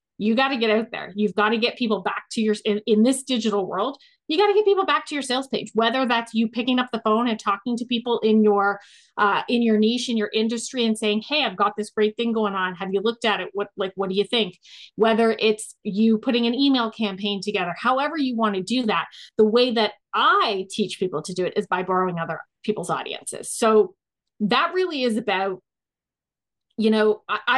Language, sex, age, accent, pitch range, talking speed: English, female, 30-49, American, 205-240 Hz, 235 wpm